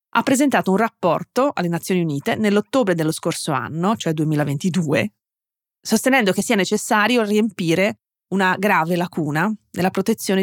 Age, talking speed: 30-49, 130 wpm